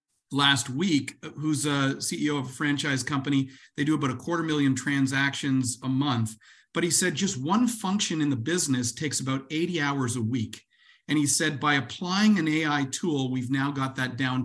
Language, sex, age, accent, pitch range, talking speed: English, male, 40-59, American, 130-155 Hz, 190 wpm